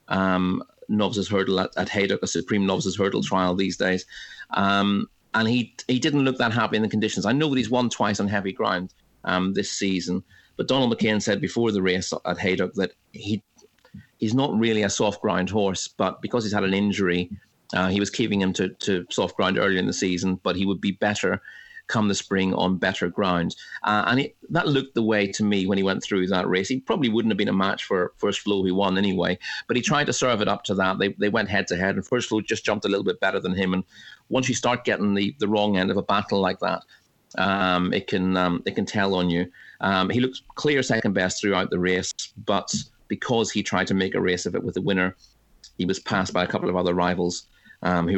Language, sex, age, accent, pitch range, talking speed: English, male, 30-49, British, 90-105 Hz, 240 wpm